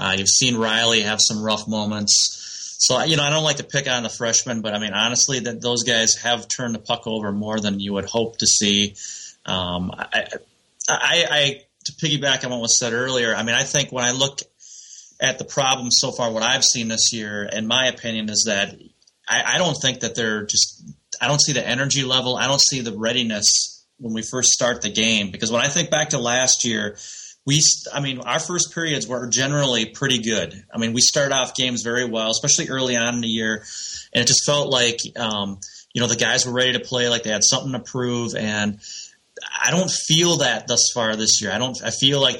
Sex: male